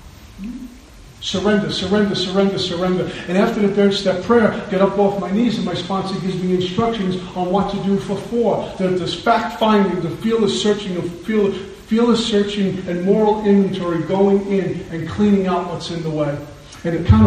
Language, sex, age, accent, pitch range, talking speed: English, male, 50-69, American, 170-200 Hz, 185 wpm